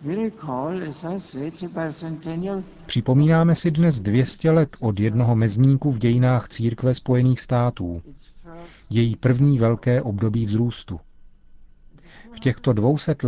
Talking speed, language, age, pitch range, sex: 95 wpm, Czech, 40-59, 110-130 Hz, male